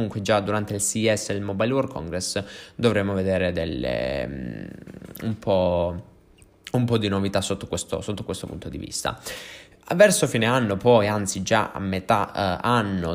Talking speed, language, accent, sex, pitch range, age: 165 wpm, Italian, native, male, 95-115 Hz, 20-39